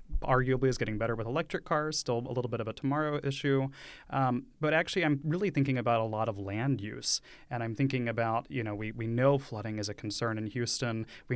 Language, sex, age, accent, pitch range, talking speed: English, male, 30-49, American, 115-140 Hz, 225 wpm